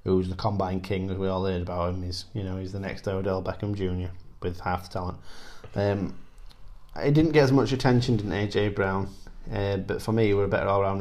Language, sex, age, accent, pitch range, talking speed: English, male, 20-39, British, 95-110 Hz, 230 wpm